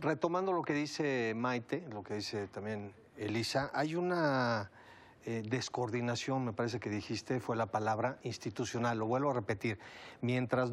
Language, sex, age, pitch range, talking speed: Spanish, male, 40-59, 110-135 Hz, 150 wpm